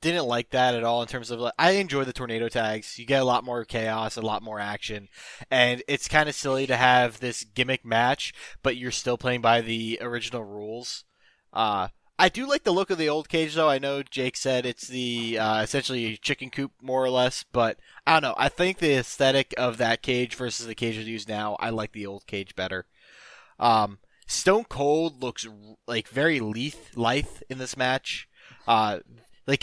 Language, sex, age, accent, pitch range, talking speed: English, male, 20-39, American, 115-140 Hz, 210 wpm